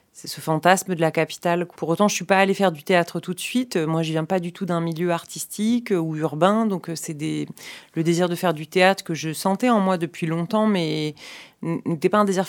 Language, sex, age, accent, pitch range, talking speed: French, female, 30-49, French, 150-185 Hz, 250 wpm